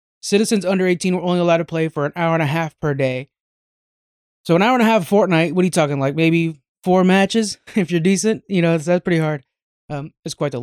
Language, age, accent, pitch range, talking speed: English, 20-39, American, 150-190 Hz, 245 wpm